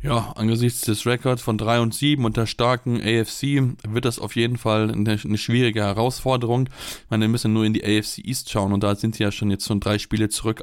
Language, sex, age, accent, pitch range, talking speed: German, male, 20-39, German, 110-125 Hz, 245 wpm